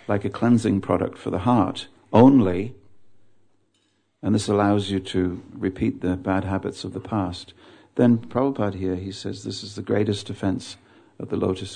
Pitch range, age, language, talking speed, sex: 95-125 Hz, 50-69, English, 170 wpm, male